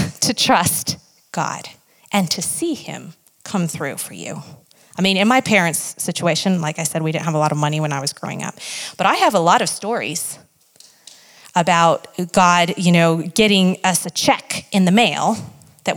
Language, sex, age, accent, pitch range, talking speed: English, female, 30-49, American, 165-200 Hz, 190 wpm